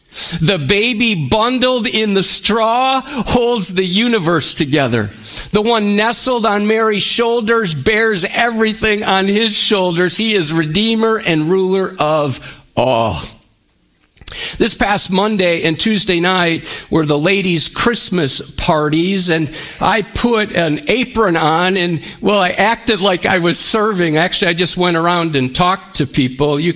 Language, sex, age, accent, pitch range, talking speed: English, male, 50-69, American, 155-215 Hz, 140 wpm